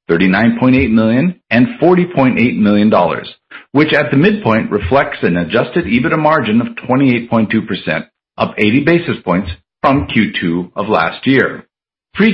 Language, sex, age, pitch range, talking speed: English, male, 50-69, 110-155 Hz, 125 wpm